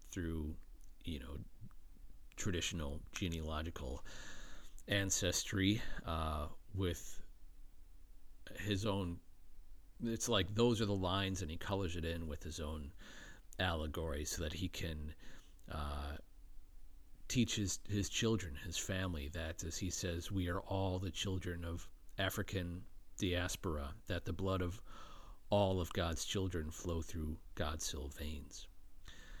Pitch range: 80-100 Hz